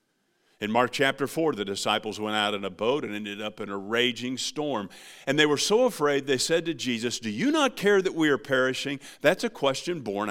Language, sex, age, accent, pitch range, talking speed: English, male, 50-69, American, 110-170 Hz, 225 wpm